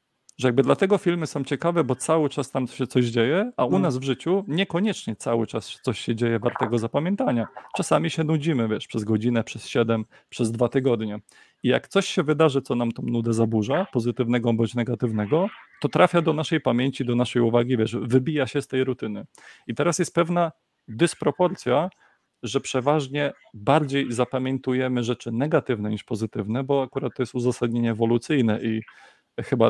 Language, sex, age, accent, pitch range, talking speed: Polish, male, 40-59, native, 120-155 Hz, 170 wpm